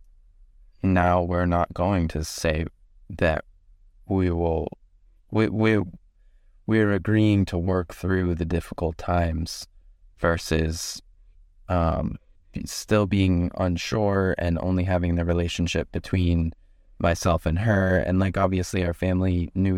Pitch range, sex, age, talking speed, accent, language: 80-90 Hz, male, 20-39, 120 wpm, American, English